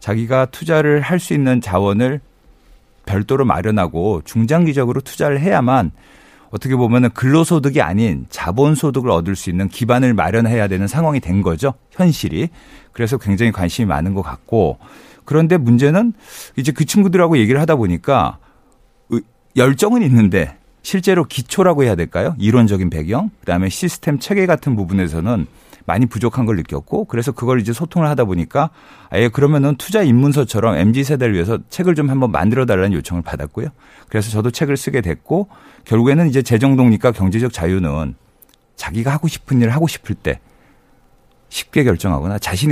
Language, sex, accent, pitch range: Korean, male, native, 100-145 Hz